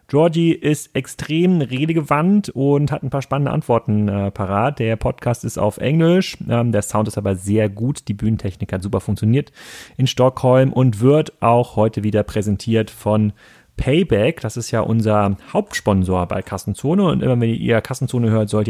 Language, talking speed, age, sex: German, 170 wpm, 30-49, male